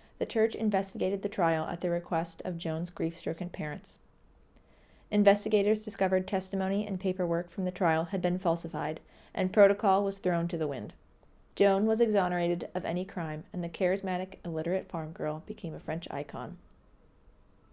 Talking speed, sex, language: 155 wpm, female, English